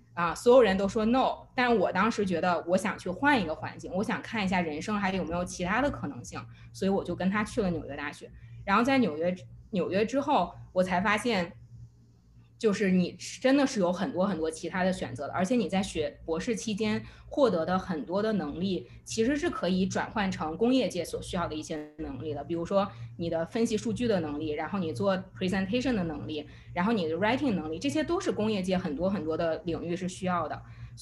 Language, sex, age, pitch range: Chinese, female, 20-39, 160-215 Hz